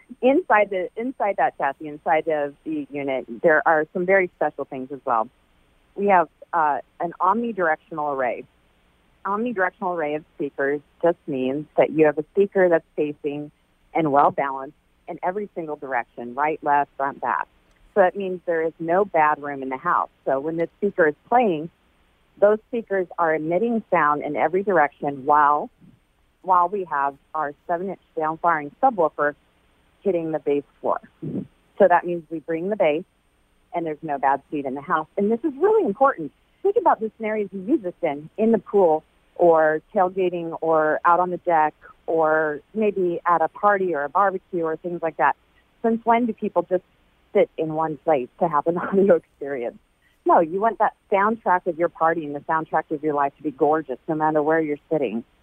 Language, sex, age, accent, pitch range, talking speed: English, female, 40-59, American, 145-185 Hz, 185 wpm